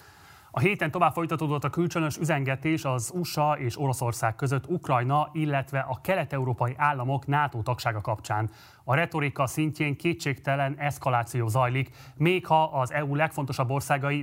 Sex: male